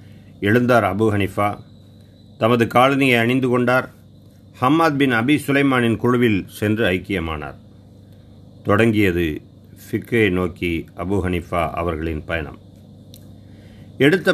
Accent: native